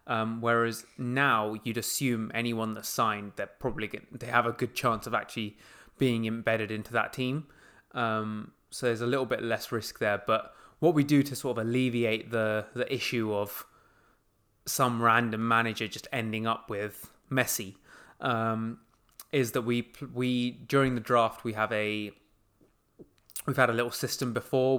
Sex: male